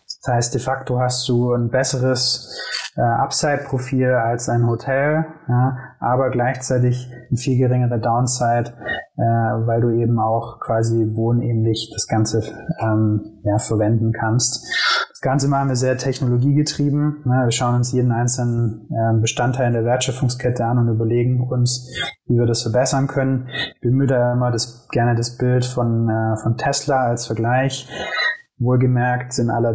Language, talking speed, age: German, 155 wpm, 20-39